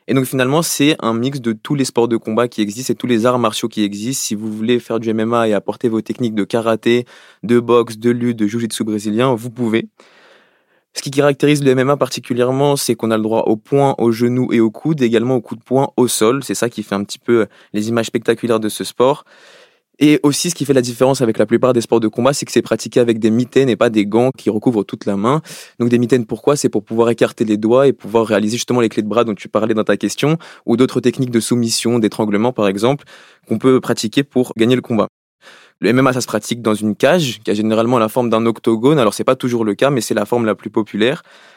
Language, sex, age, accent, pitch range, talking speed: French, male, 20-39, French, 110-130 Hz, 260 wpm